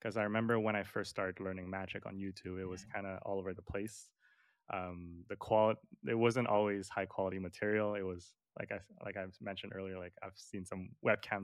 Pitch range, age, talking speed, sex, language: 95-110 Hz, 20-39, 215 wpm, male, English